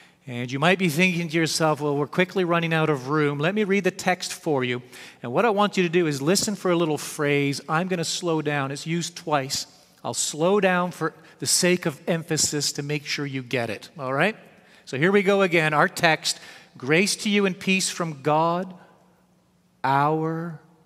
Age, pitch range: 40-59, 140-175 Hz